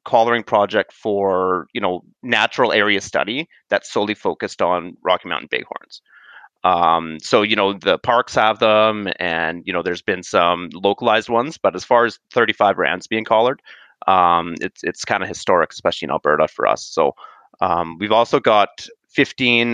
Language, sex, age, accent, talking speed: English, male, 30-49, American, 170 wpm